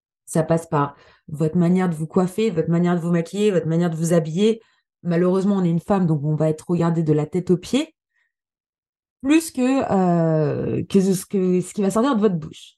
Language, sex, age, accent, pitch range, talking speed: French, female, 20-39, French, 160-205 Hz, 205 wpm